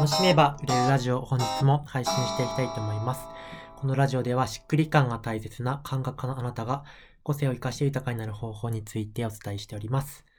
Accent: native